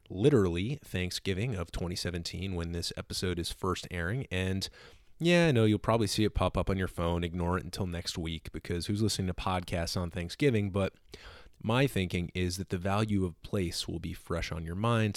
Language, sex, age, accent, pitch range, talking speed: English, male, 30-49, American, 85-105 Hz, 200 wpm